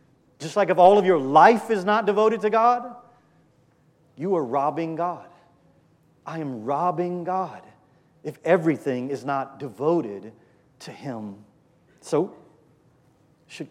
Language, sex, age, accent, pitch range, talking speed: English, male, 30-49, American, 155-195 Hz, 125 wpm